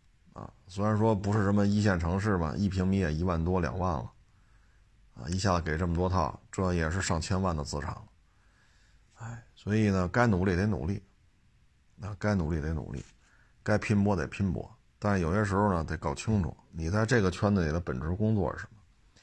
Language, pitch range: Chinese, 90-105 Hz